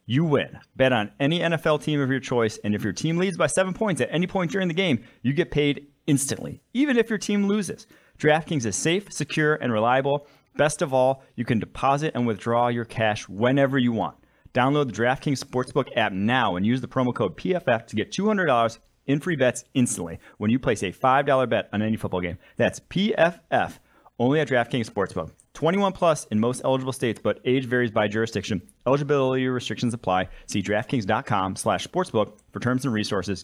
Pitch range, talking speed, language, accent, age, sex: 110-145 Hz, 190 wpm, English, American, 30-49, male